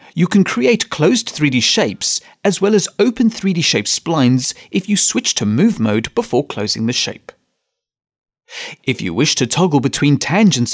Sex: male